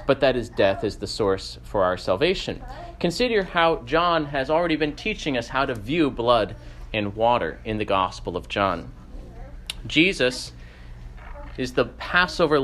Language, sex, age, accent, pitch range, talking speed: English, male, 30-49, American, 110-175 Hz, 155 wpm